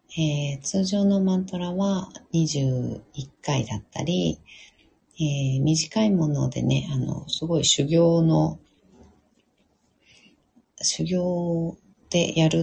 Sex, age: female, 40-59